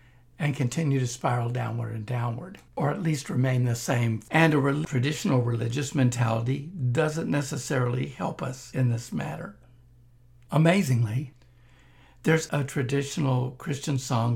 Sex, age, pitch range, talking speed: male, 60-79, 120-145 Hz, 130 wpm